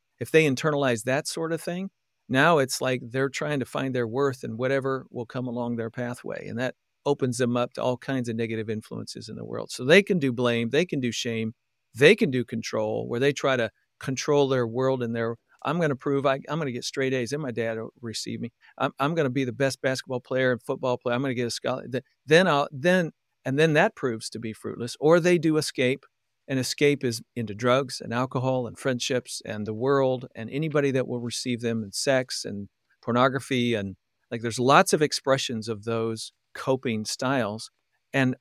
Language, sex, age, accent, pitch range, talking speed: English, male, 50-69, American, 120-140 Hz, 220 wpm